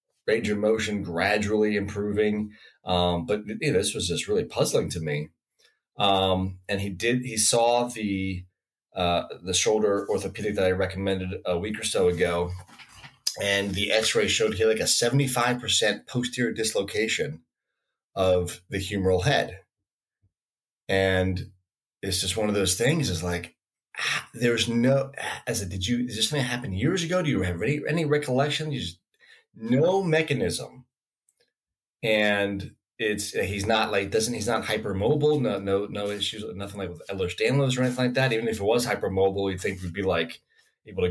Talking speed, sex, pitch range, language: 170 wpm, male, 95-120 Hz, English